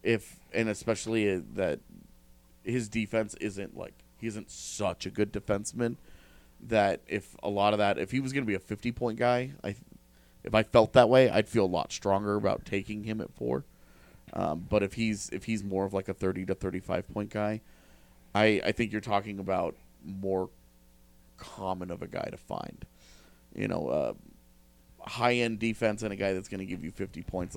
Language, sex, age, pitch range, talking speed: English, male, 30-49, 80-105 Hz, 200 wpm